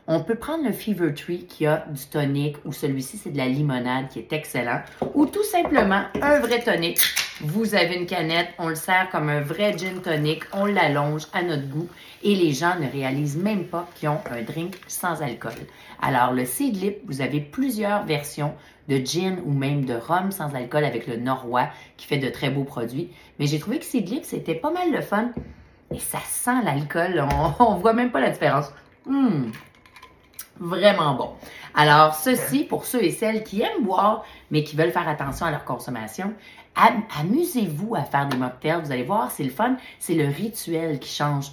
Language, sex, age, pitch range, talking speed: French, female, 30-49, 140-205 Hz, 195 wpm